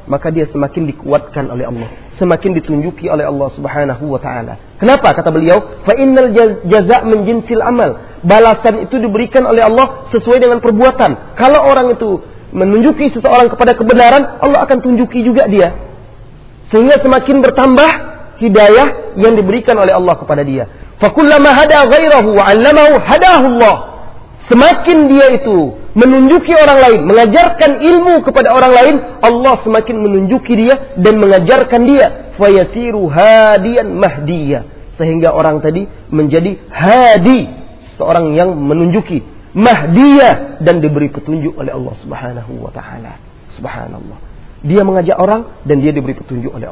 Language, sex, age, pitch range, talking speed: Malay, male, 40-59, 165-255 Hz, 135 wpm